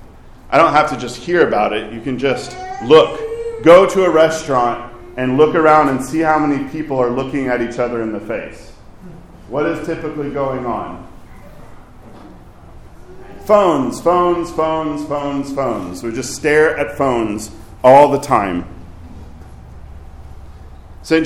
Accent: American